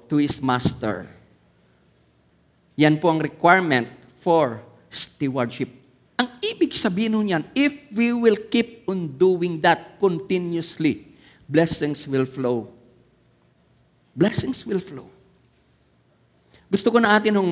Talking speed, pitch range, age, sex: 115 wpm, 145-215 Hz, 50-69, male